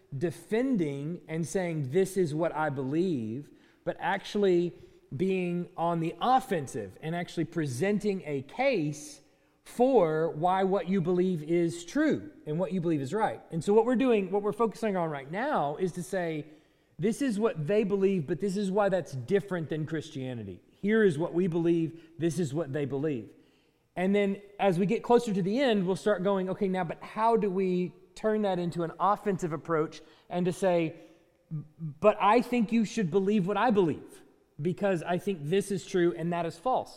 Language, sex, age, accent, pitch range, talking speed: English, male, 30-49, American, 160-205 Hz, 185 wpm